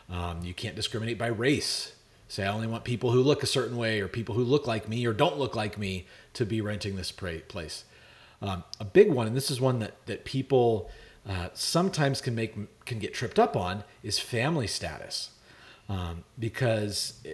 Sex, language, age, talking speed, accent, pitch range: male, English, 40-59, 195 wpm, American, 105-130 Hz